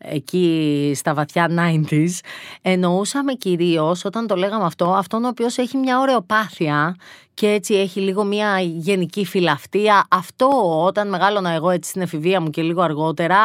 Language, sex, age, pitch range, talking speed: Greek, female, 30-49, 160-195 Hz, 155 wpm